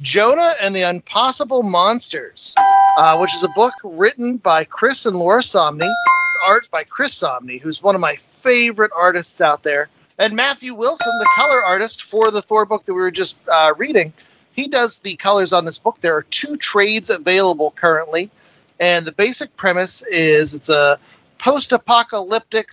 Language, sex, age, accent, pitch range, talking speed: English, male, 40-59, American, 165-225 Hz, 170 wpm